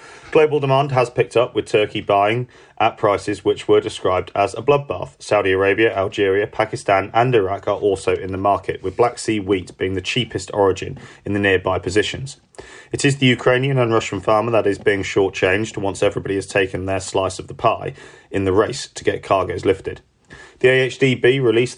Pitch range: 95-130 Hz